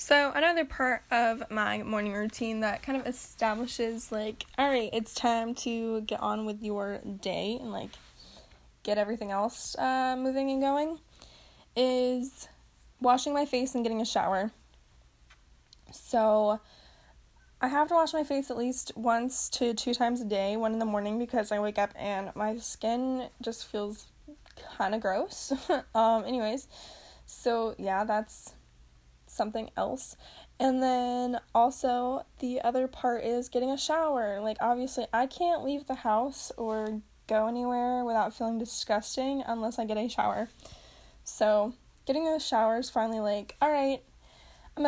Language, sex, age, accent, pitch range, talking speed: English, female, 10-29, American, 215-255 Hz, 155 wpm